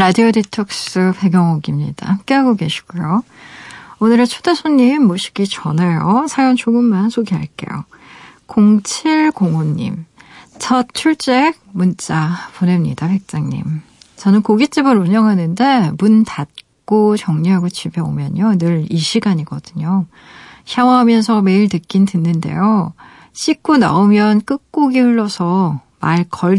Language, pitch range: Korean, 170-220 Hz